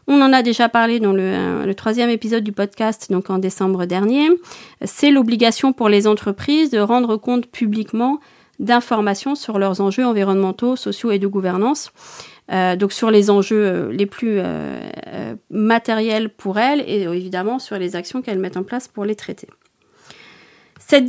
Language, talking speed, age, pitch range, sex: French, 165 wpm, 40-59, 195-240 Hz, female